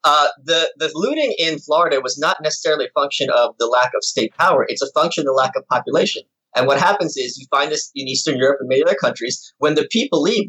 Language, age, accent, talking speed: English, 30-49, American, 245 wpm